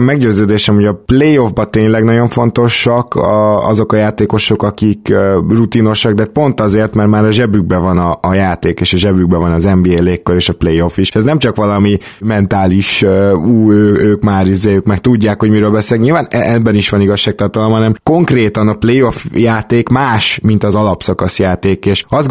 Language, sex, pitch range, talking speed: Hungarian, male, 100-115 Hz, 185 wpm